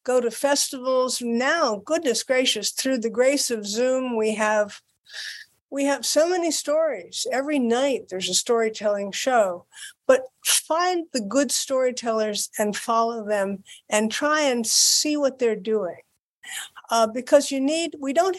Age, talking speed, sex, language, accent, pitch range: 50-69, 145 wpm, female, English, American, 215-270 Hz